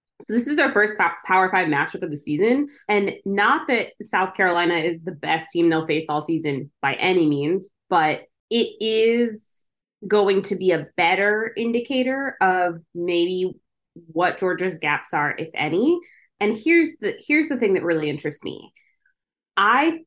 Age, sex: 20-39, female